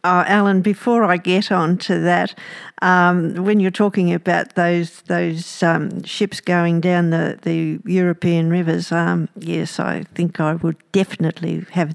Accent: Australian